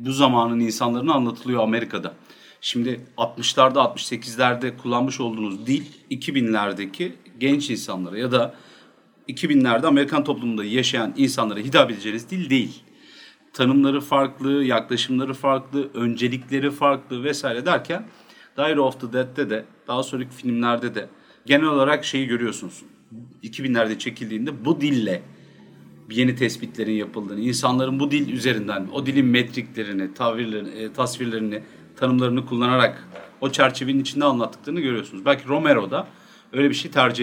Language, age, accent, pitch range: Turkish, 40-59, native, 115-140 Hz